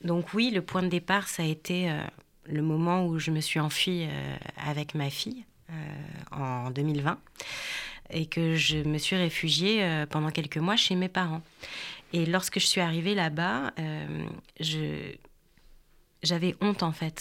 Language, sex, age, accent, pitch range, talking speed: French, female, 30-49, French, 150-180 Hz, 170 wpm